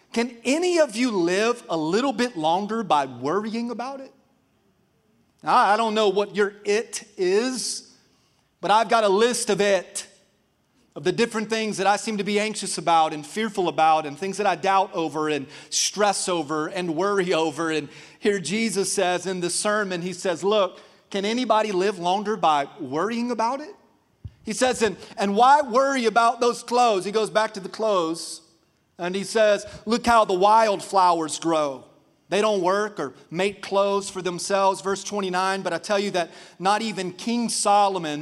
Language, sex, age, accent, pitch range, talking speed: English, male, 30-49, American, 180-225 Hz, 175 wpm